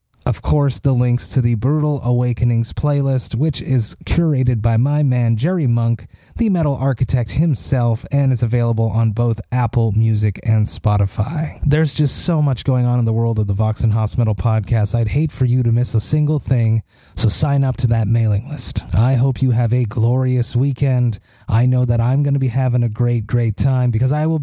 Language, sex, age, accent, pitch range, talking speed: English, male, 30-49, American, 115-135 Hz, 205 wpm